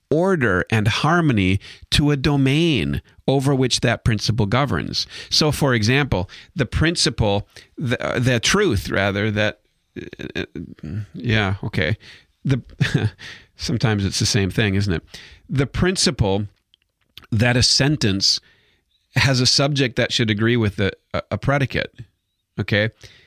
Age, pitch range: 40-59, 100-135 Hz